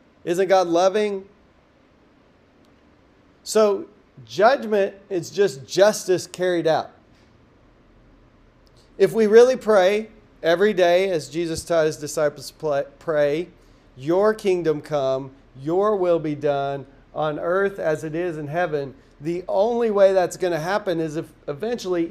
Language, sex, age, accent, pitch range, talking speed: English, male, 40-59, American, 145-185 Hz, 130 wpm